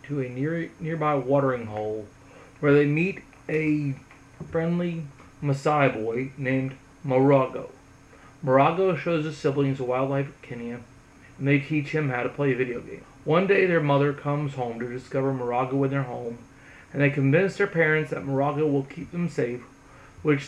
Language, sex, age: English, male, 30-49